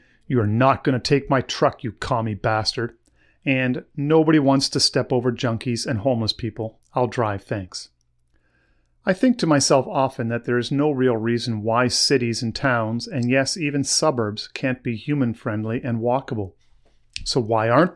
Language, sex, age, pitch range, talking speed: English, male, 40-59, 110-135 Hz, 170 wpm